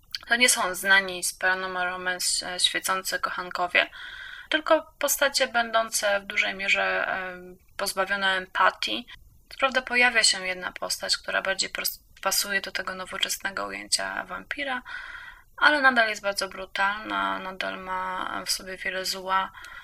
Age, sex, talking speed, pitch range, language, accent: 20-39, female, 125 wpm, 185-260 Hz, Polish, native